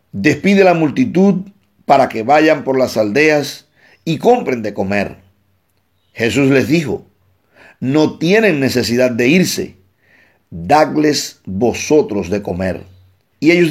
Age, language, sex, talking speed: 50-69, Spanish, male, 120 wpm